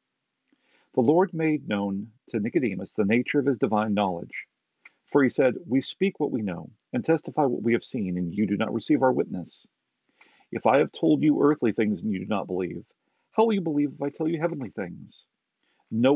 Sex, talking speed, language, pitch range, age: male, 210 wpm, English, 110-150 Hz, 40-59